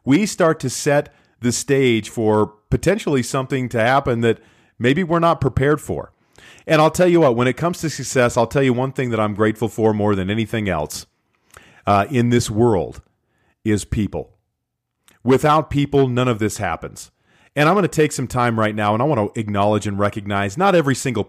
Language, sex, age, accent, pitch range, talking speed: English, male, 40-59, American, 105-130 Hz, 200 wpm